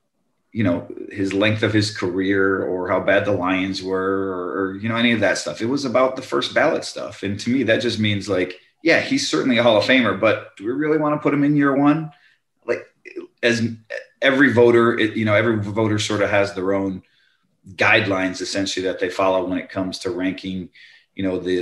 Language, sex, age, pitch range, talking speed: English, male, 30-49, 95-110 Hz, 220 wpm